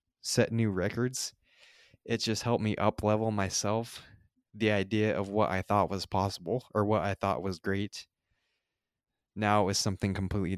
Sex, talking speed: male, 160 wpm